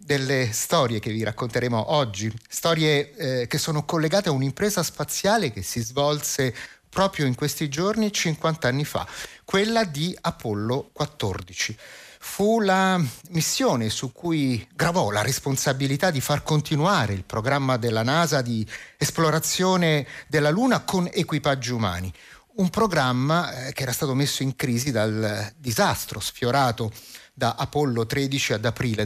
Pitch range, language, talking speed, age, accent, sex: 115-160 Hz, Italian, 140 wpm, 30-49, native, male